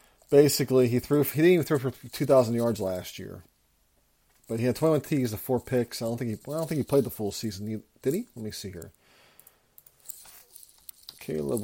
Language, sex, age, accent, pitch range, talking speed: English, male, 40-59, American, 80-130 Hz, 215 wpm